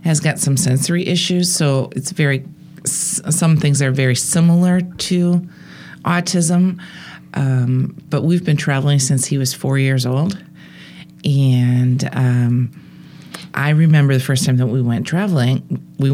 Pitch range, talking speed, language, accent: 130-165 Hz, 140 wpm, English, American